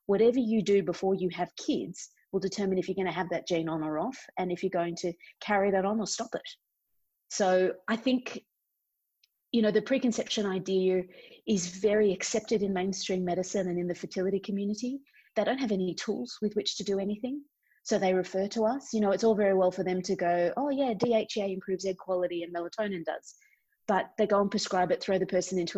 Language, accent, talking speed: English, Australian, 215 wpm